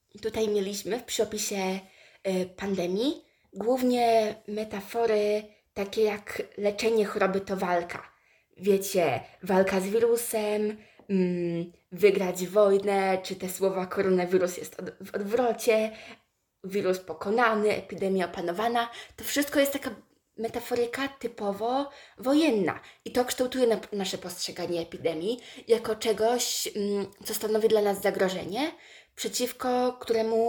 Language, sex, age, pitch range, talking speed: Polish, female, 20-39, 190-230 Hz, 100 wpm